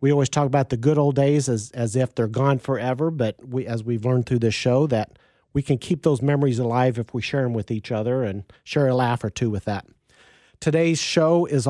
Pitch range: 120-150 Hz